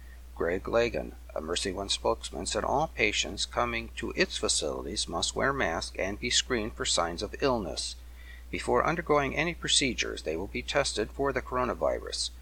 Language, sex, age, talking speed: English, male, 60-79, 160 wpm